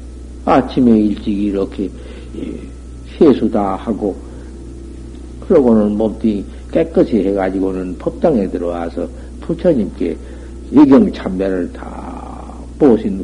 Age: 60-79